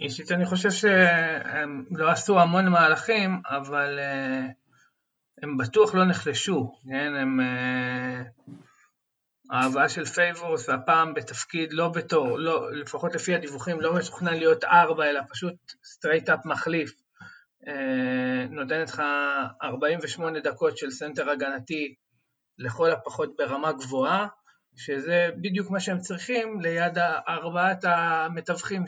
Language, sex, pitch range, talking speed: Hebrew, male, 145-190 Hz, 110 wpm